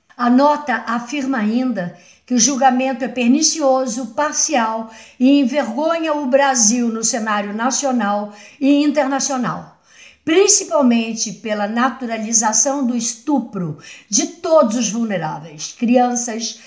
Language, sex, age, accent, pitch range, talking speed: Portuguese, female, 60-79, Brazilian, 210-265 Hz, 105 wpm